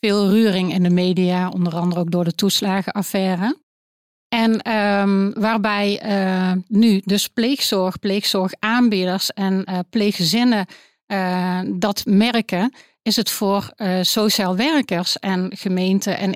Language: Dutch